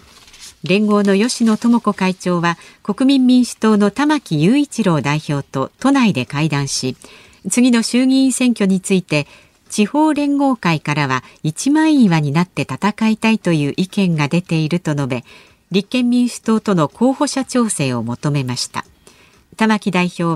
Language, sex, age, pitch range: Japanese, female, 50-69, 155-240 Hz